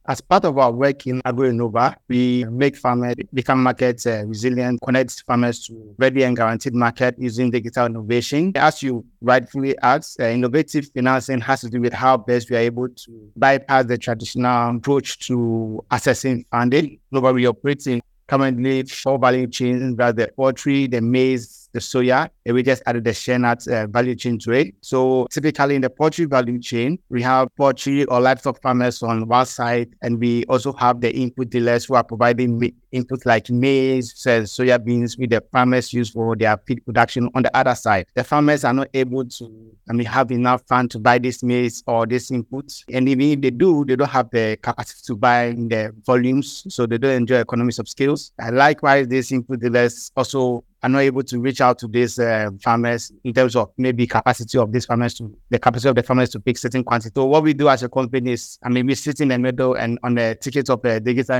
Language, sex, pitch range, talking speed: English, male, 120-130 Hz, 210 wpm